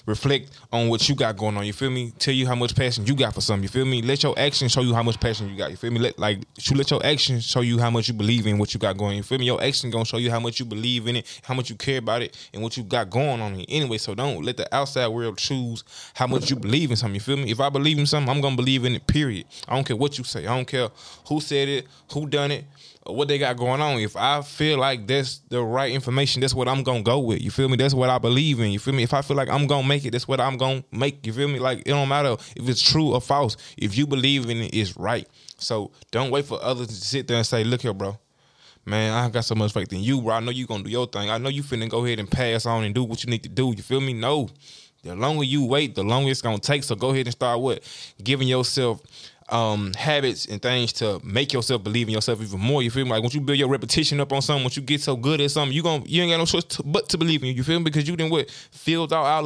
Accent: American